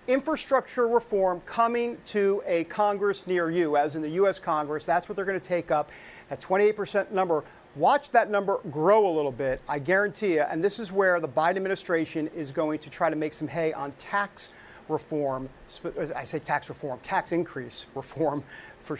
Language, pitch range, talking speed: English, 165-245 Hz, 190 wpm